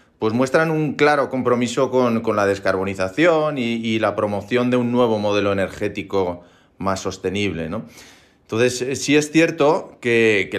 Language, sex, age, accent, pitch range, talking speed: Spanish, male, 30-49, Spanish, 100-125 Hz, 155 wpm